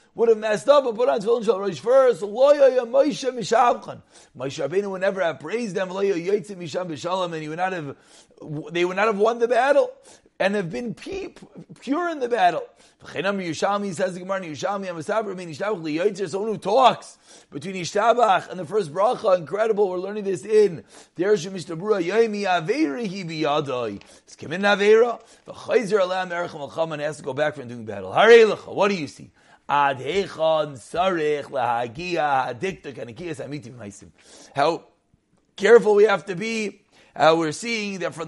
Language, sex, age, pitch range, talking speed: English, male, 30-49, 155-220 Hz, 115 wpm